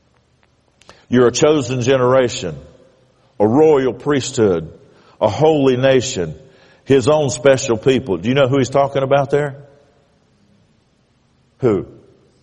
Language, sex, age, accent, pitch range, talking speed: English, male, 50-69, American, 130-195 Hz, 110 wpm